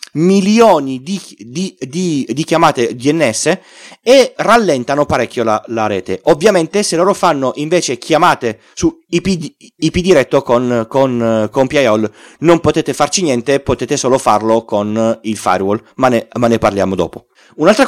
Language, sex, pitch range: Italian, male, 120-175 Hz